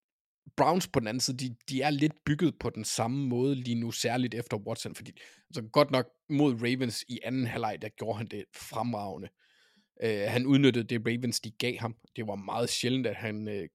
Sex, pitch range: male, 115-135 Hz